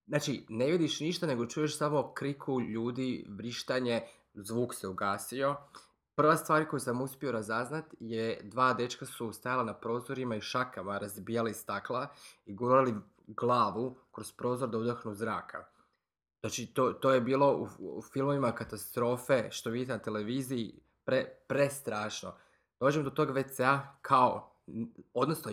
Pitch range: 115-140 Hz